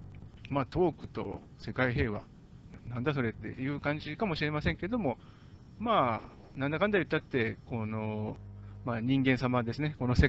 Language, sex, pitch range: Japanese, male, 105-140 Hz